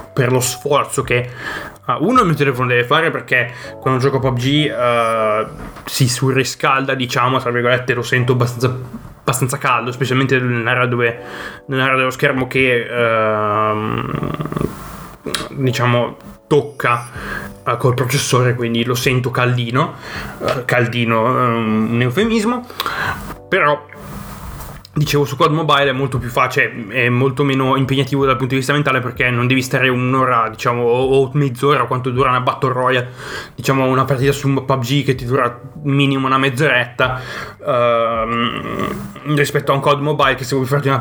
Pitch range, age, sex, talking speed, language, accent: 125-140 Hz, 20-39, male, 150 wpm, Italian, native